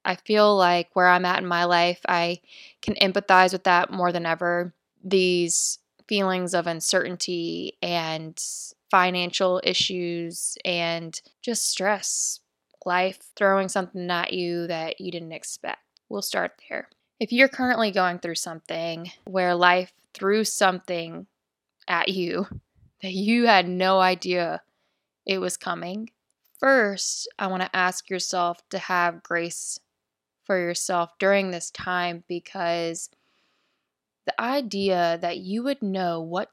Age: 20-39